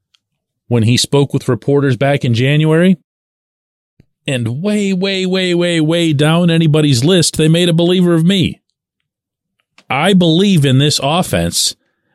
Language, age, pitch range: English, 40-59, 95-150 Hz